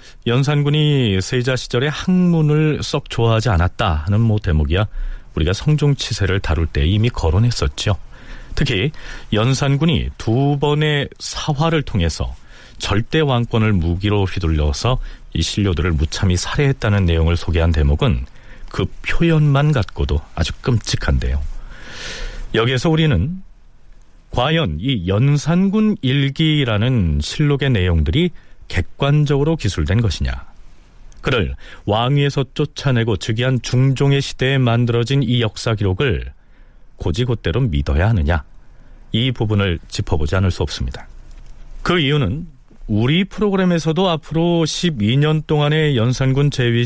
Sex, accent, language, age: male, native, Korean, 40-59